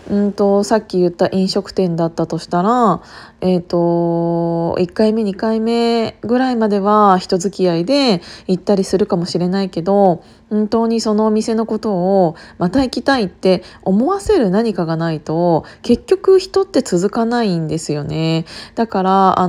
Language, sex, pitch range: Japanese, female, 175-235 Hz